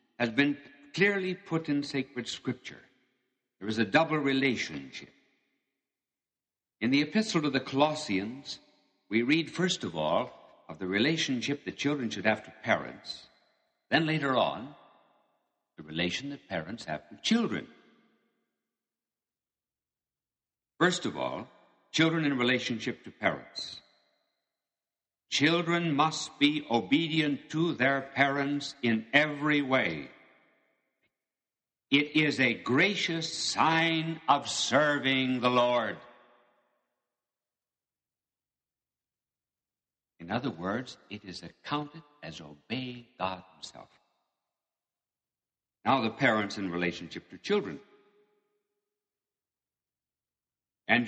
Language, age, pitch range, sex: English, 60-79, 115-160 Hz, male